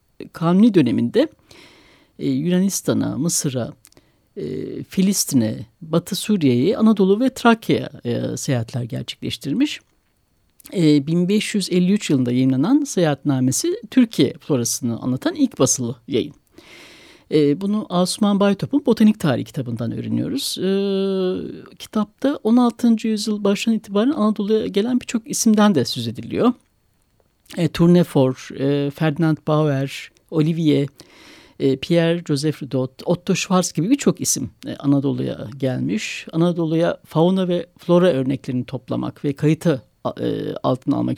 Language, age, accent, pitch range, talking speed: Turkish, 60-79, native, 140-200 Hz, 105 wpm